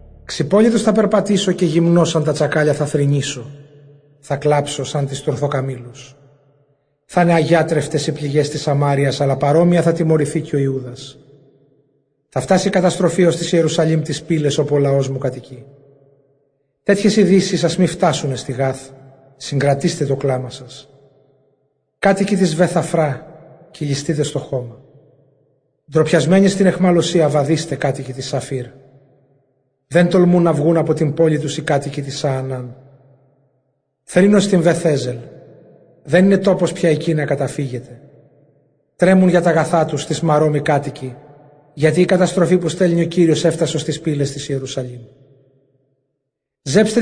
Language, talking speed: Greek, 140 wpm